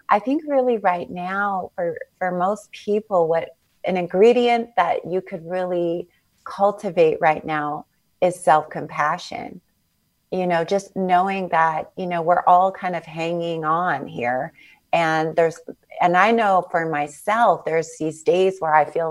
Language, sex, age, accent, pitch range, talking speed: English, female, 30-49, American, 165-205 Hz, 150 wpm